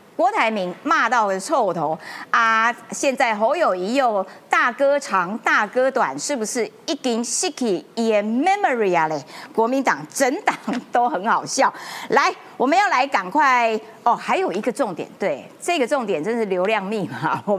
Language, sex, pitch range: Chinese, female, 210-305 Hz